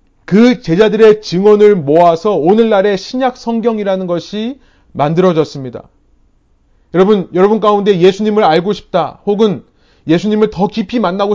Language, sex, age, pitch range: Korean, male, 30-49, 165-225 Hz